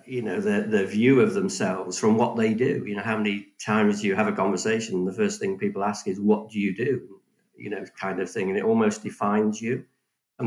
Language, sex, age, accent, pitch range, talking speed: English, male, 50-69, British, 100-135 Hz, 235 wpm